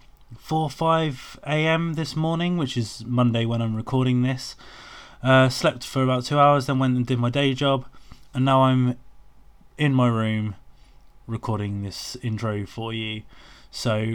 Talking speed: 155 wpm